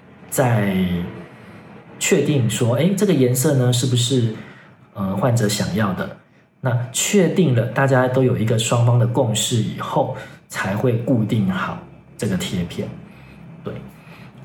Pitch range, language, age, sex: 110-140 Hz, Chinese, 40-59, male